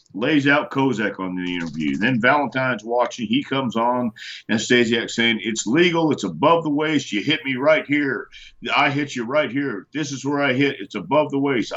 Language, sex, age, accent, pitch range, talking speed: English, male, 50-69, American, 120-160 Hz, 205 wpm